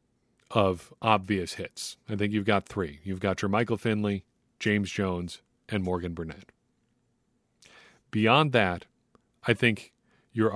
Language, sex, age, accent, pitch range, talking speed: English, male, 40-59, American, 95-115 Hz, 130 wpm